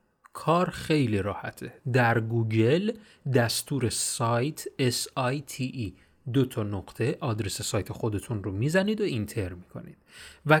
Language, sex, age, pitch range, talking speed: Persian, male, 30-49, 110-160 Hz, 115 wpm